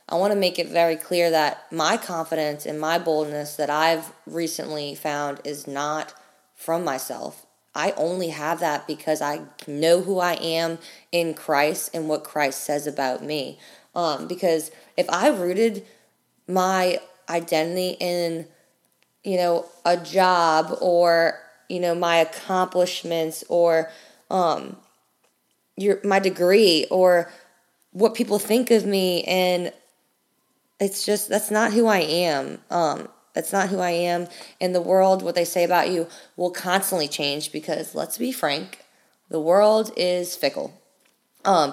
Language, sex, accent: English, female, American